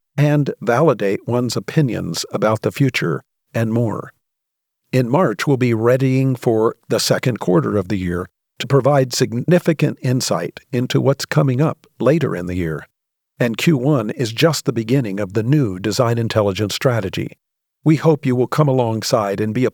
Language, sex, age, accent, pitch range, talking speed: English, male, 50-69, American, 110-135 Hz, 165 wpm